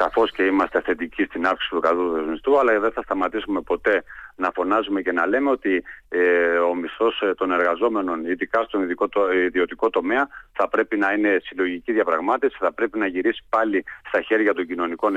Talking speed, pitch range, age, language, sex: 170 wpm, 90-135 Hz, 40-59, Greek, male